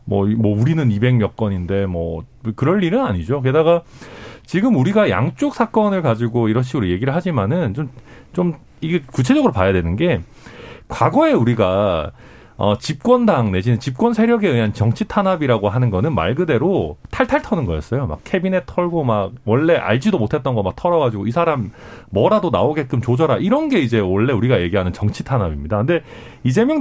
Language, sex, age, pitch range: Korean, male, 40-59, 110-185 Hz